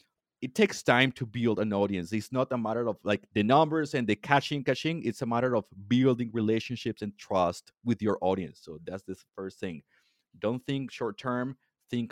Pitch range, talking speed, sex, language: 105-135 Hz, 200 wpm, male, English